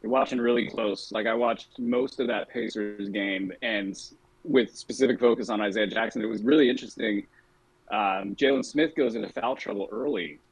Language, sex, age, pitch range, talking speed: English, male, 20-39, 100-120 Hz, 170 wpm